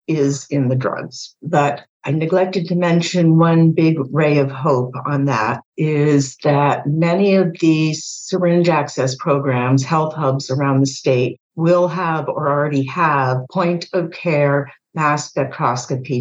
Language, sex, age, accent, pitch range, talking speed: English, female, 60-79, American, 135-175 Hz, 145 wpm